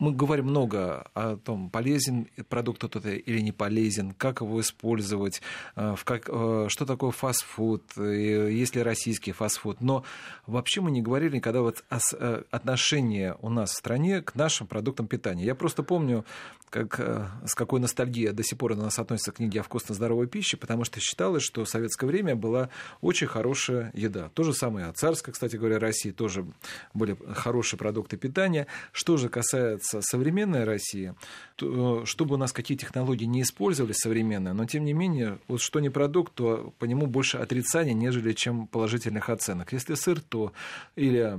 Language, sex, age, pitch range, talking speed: Russian, male, 40-59, 105-130 Hz, 170 wpm